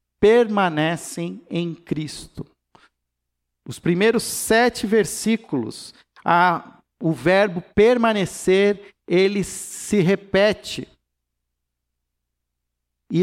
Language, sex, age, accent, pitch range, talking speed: Portuguese, male, 50-69, Brazilian, 175-220 Hz, 65 wpm